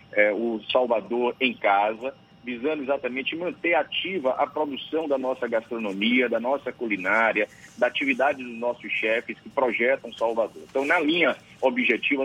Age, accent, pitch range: 50-69, Brazilian, 120-160 Hz